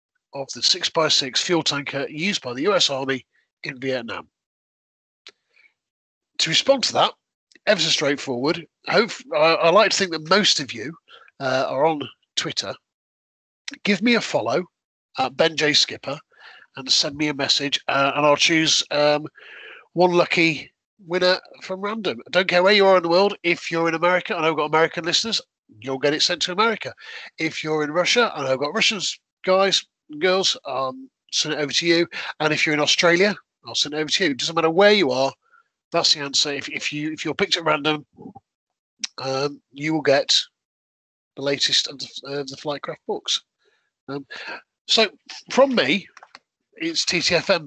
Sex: male